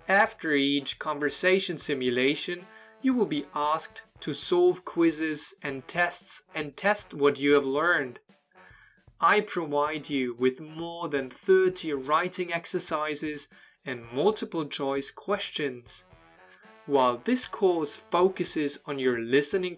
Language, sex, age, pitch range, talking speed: German, male, 20-39, 140-180 Hz, 120 wpm